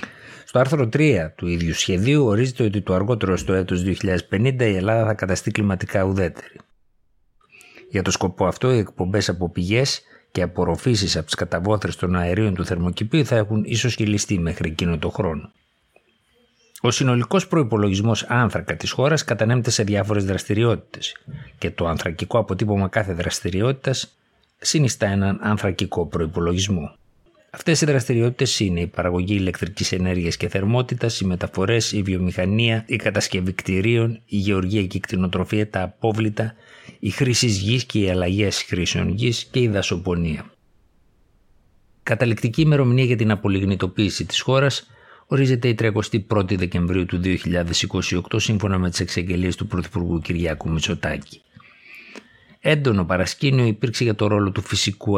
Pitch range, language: 90-115 Hz, Greek